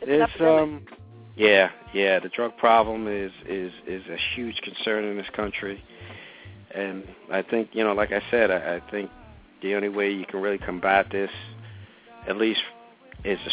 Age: 50-69